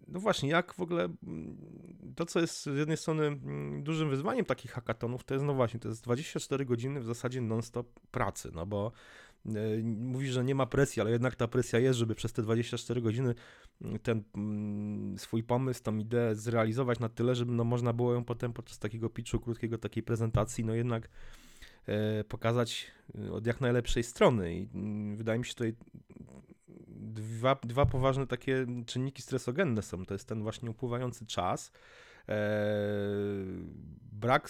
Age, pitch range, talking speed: 30-49, 105-120 Hz, 170 wpm